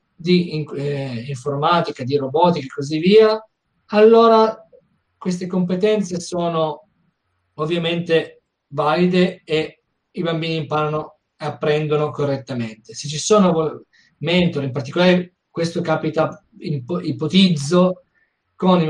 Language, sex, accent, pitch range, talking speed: Italian, male, native, 155-190 Hz, 110 wpm